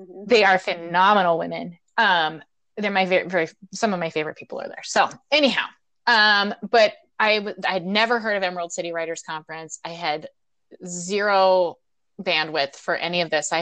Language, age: English, 20-39